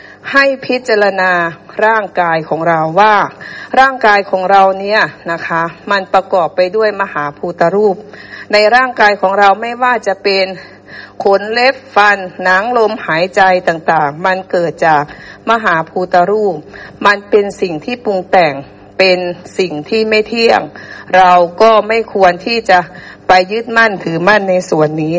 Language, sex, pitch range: Thai, female, 185-225 Hz